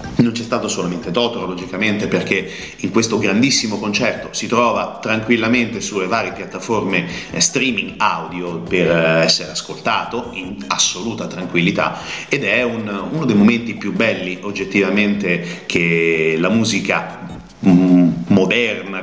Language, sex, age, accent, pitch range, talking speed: Italian, male, 30-49, native, 90-105 Hz, 115 wpm